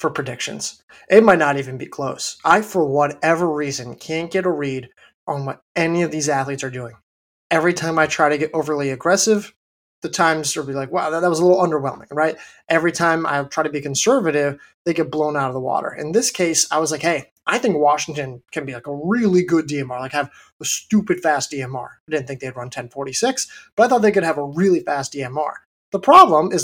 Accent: American